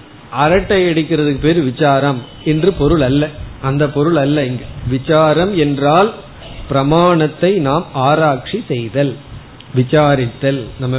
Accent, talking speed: native, 85 wpm